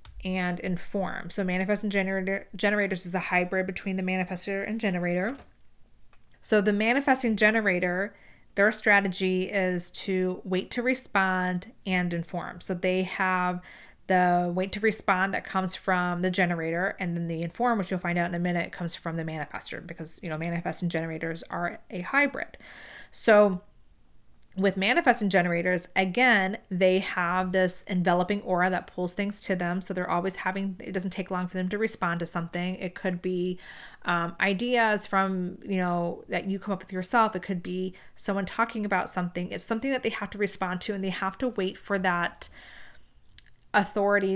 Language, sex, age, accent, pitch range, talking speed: English, female, 20-39, American, 180-200 Hz, 175 wpm